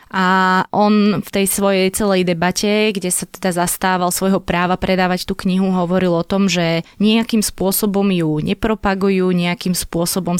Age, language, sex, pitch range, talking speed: 20-39, Slovak, female, 175-205 Hz, 150 wpm